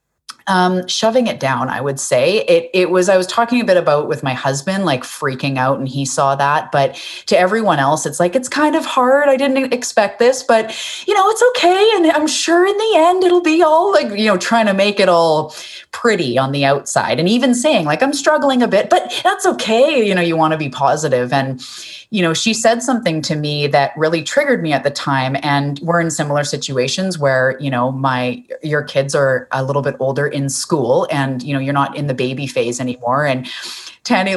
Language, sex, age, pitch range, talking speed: English, female, 30-49, 140-220 Hz, 225 wpm